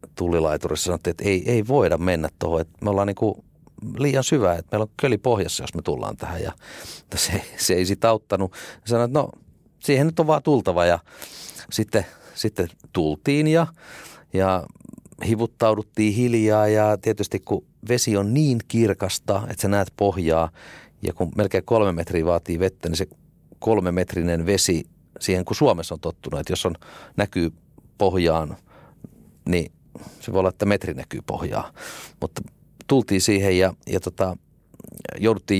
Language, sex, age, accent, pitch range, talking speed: Finnish, male, 40-59, native, 85-110 Hz, 155 wpm